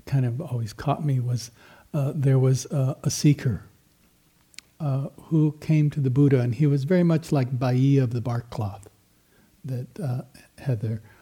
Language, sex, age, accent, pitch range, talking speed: English, male, 60-79, American, 115-155 Hz, 170 wpm